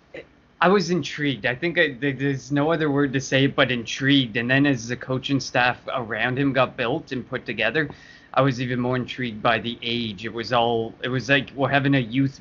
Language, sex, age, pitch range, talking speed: English, male, 20-39, 120-135 Hz, 215 wpm